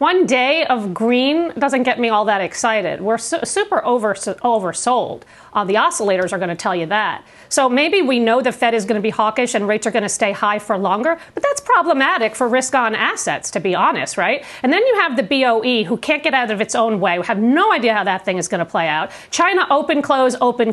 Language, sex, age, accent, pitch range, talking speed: English, female, 40-59, American, 225-285 Hz, 240 wpm